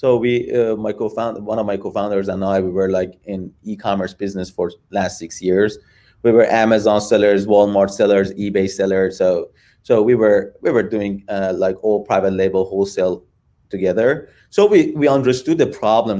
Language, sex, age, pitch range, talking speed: English, male, 30-49, 100-130 Hz, 180 wpm